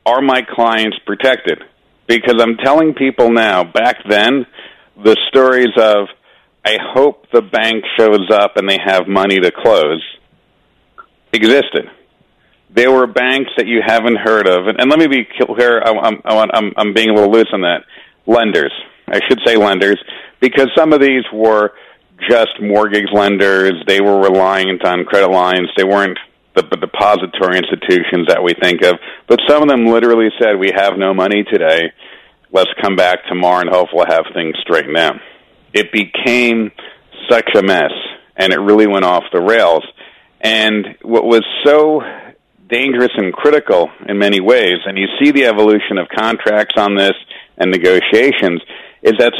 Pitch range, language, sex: 100-125 Hz, English, male